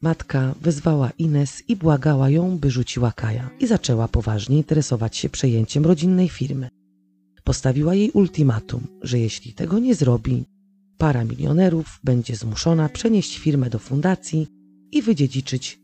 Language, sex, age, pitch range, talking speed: Polish, female, 30-49, 120-165 Hz, 135 wpm